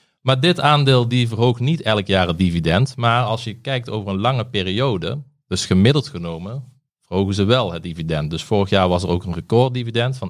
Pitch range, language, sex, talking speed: 95-125 Hz, Dutch, male, 200 wpm